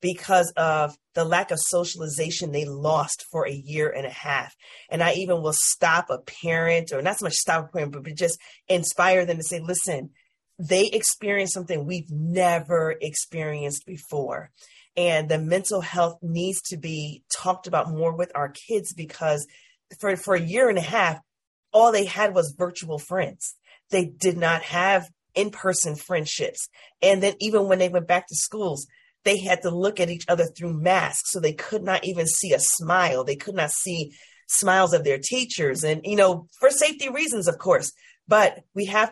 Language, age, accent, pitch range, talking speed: English, 30-49, American, 165-195 Hz, 185 wpm